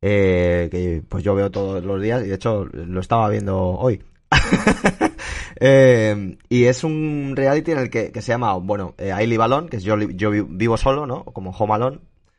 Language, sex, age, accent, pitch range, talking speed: Spanish, male, 20-39, Spanish, 100-135 Hz, 200 wpm